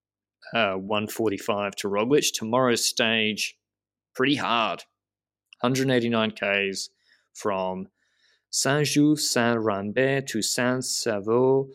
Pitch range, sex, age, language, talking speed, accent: 105-135 Hz, male, 20-39, English, 90 wpm, Australian